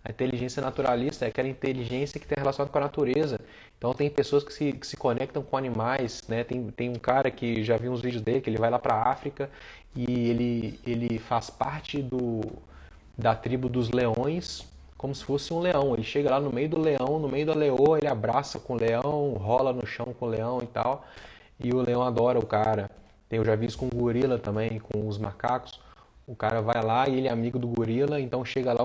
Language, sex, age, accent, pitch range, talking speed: Portuguese, male, 20-39, Brazilian, 115-140 Hz, 225 wpm